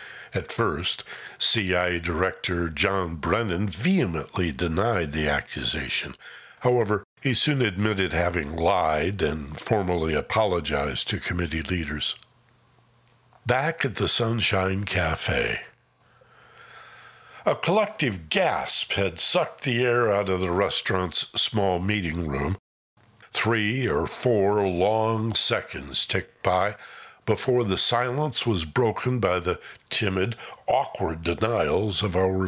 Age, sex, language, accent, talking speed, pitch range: 60-79, male, English, American, 110 wpm, 90-120 Hz